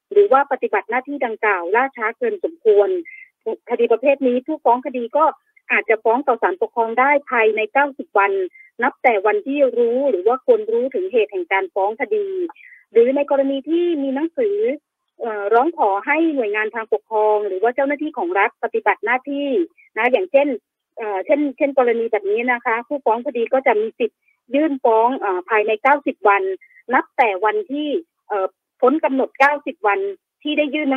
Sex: female